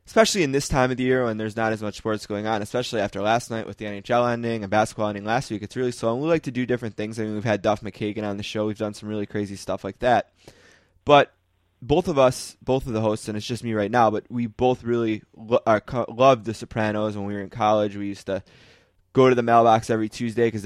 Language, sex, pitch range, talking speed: English, male, 105-125 Hz, 275 wpm